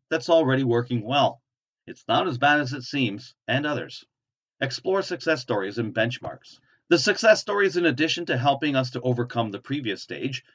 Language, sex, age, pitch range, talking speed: English, male, 40-59, 120-145 Hz, 175 wpm